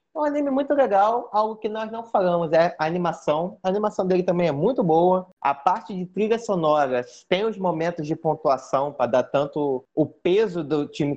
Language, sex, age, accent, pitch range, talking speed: Portuguese, male, 20-39, Brazilian, 145-205 Hz, 200 wpm